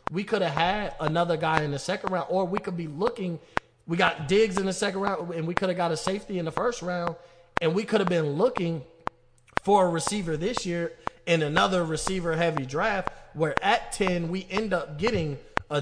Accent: American